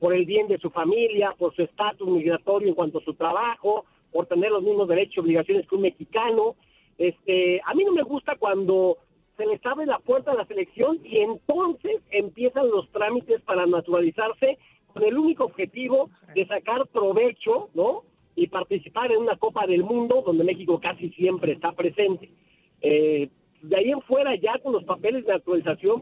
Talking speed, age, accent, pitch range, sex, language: 180 wpm, 50-69, Mexican, 180-270 Hz, male, Spanish